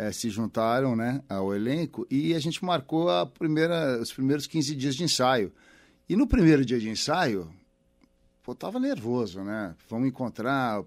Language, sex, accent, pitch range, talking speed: Portuguese, male, Brazilian, 115-150 Hz, 170 wpm